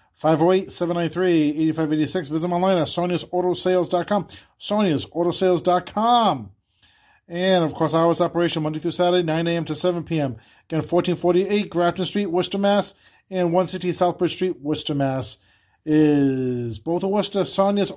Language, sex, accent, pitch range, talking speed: English, male, American, 155-190 Hz, 125 wpm